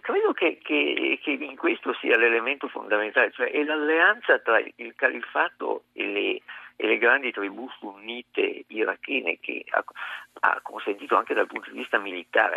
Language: Italian